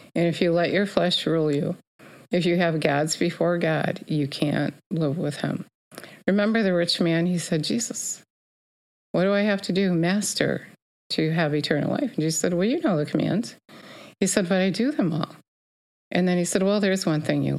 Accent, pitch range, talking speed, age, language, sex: American, 145-190 Hz, 210 wpm, 50-69, English, female